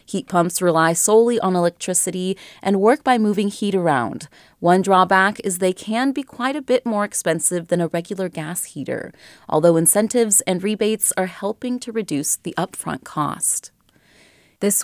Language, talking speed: English, 160 wpm